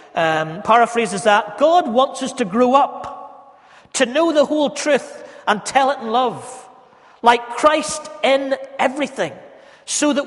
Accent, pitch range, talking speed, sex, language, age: British, 185-255 Hz, 145 wpm, male, English, 40-59